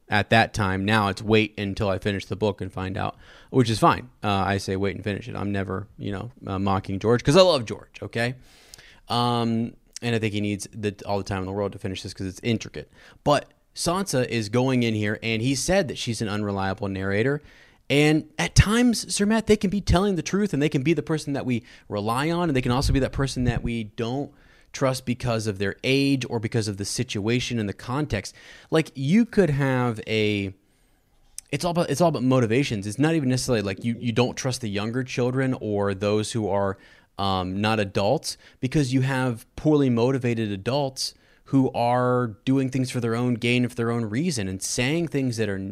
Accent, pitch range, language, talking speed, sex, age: American, 105-135 Hz, English, 220 wpm, male, 30-49